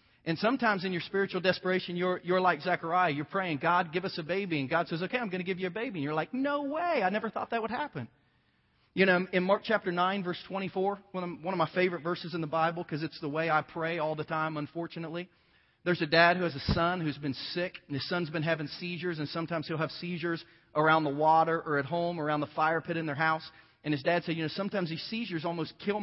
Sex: male